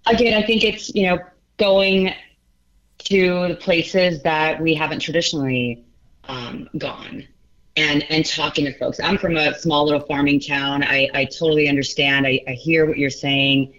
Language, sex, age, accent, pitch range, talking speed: English, female, 30-49, American, 145-190 Hz, 165 wpm